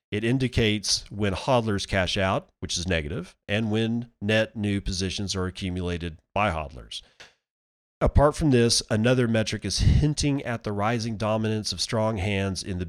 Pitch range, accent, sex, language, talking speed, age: 95-115 Hz, American, male, English, 160 wpm, 40-59